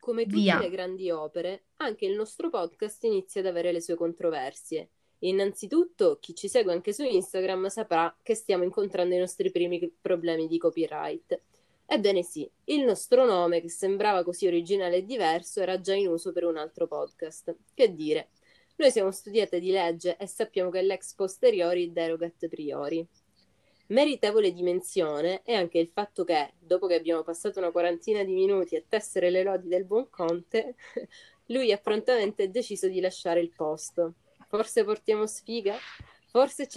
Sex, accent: female, native